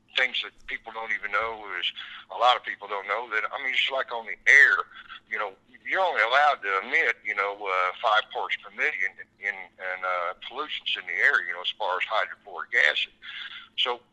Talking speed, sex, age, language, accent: 210 wpm, male, 60-79, English, American